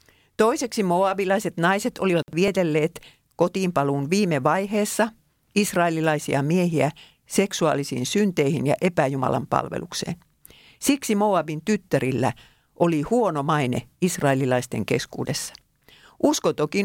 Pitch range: 145-195 Hz